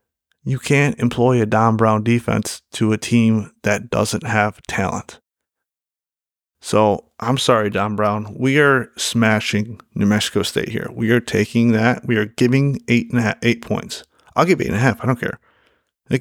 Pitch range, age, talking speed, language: 105-120 Hz, 30-49, 170 wpm, English